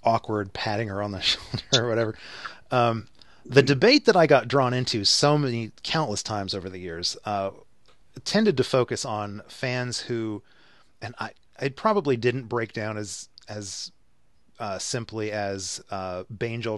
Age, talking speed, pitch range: 30-49, 155 wpm, 100-125 Hz